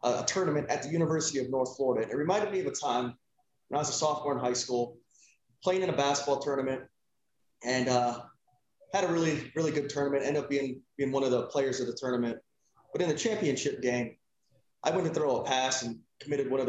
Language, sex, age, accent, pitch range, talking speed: English, male, 20-39, American, 125-150 Hz, 220 wpm